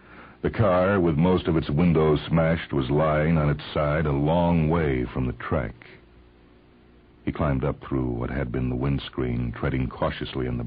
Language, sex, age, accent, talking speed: English, male, 60-79, American, 180 wpm